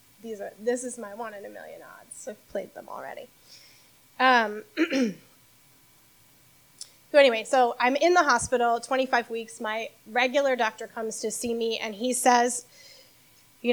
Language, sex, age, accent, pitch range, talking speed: English, female, 10-29, American, 200-245 Hz, 135 wpm